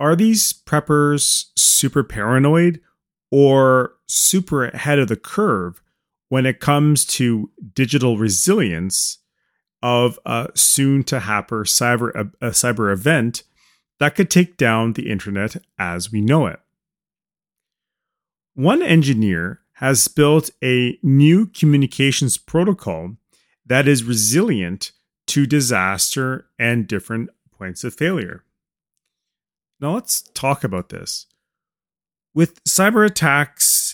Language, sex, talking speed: English, male, 105 wpm